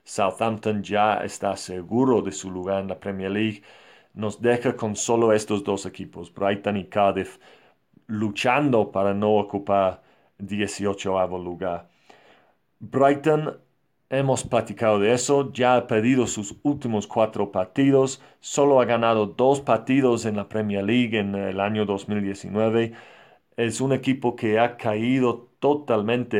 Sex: male